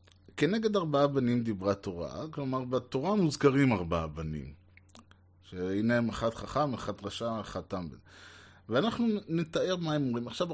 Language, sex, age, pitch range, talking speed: Hebrew, male, 30-49, 95-125 Hz, 135 wpm